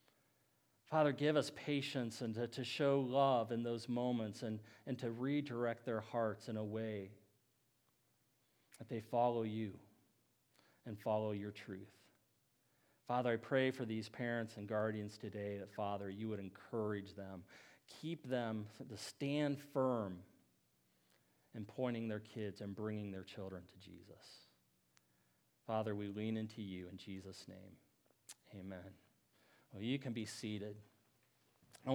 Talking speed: 140 wpm